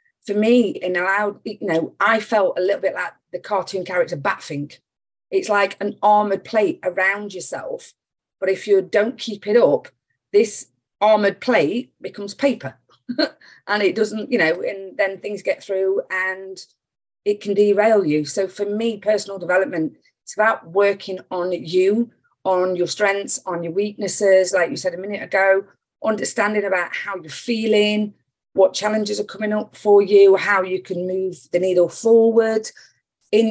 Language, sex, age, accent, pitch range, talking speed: English, female, 40-59, British, 170-210 Hz, 165 wpm